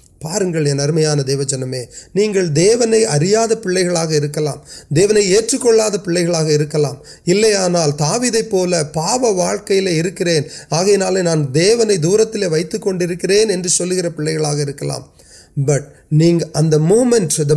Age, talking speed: 30-49, 80 wpm